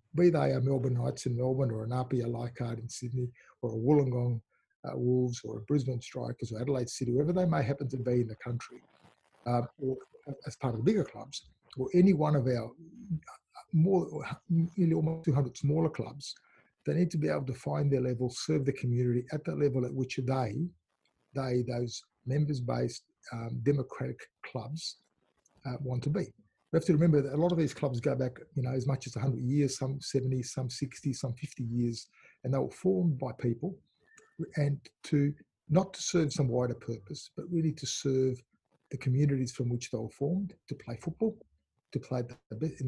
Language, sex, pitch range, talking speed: English, male, 125-155 Hz, 195 wpm